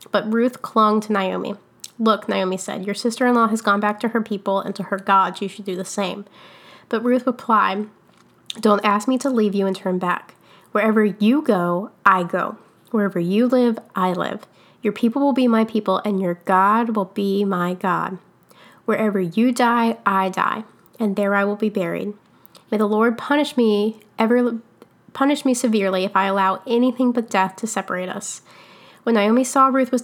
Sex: female